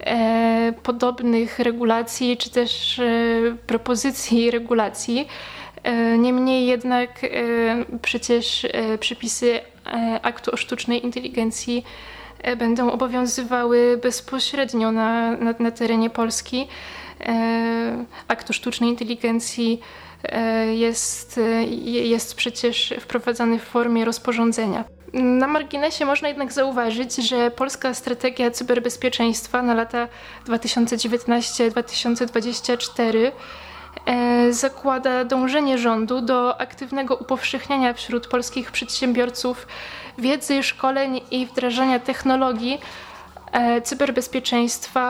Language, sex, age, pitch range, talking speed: Polish, female, 20-39, 230-255 Hz, 80 wpm